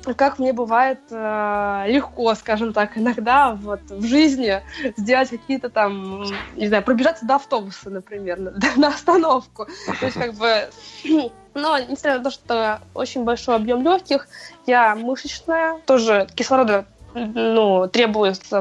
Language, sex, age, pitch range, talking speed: Russian, female, 20-39, 205-260 Hz, 125 wpm